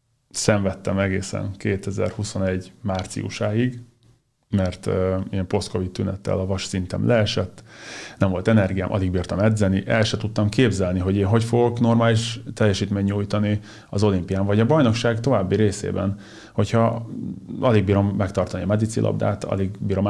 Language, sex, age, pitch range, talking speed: Hungarian, male, 30-49, 95-110 Hz, 135 wpm